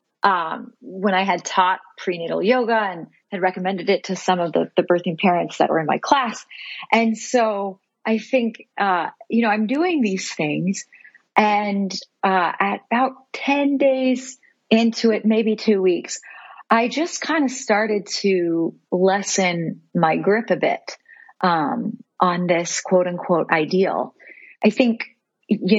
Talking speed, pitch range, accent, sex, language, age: 150 wpm, 180-225 Hz, American, female, English, 30-49